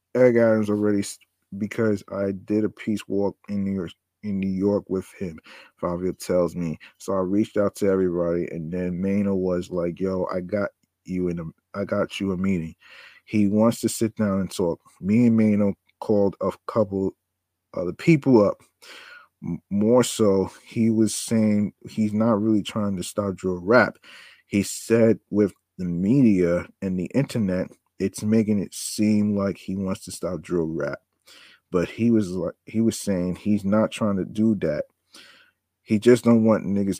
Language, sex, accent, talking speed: English, male, American, 180 wpm